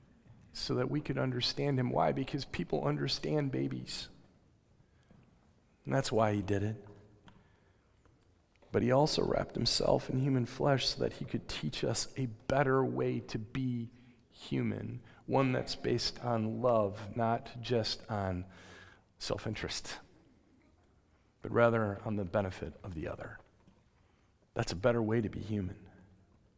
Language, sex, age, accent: English, male, 40-59, American